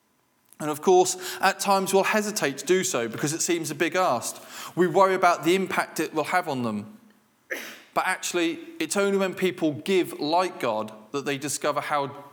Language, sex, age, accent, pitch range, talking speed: English, male, 20-39, British, 135-175 Hz, 190 wpm